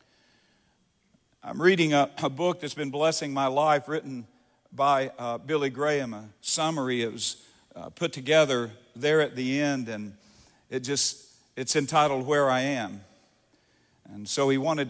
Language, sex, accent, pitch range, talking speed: English, male, American, 130-155 Hz, 155 wpm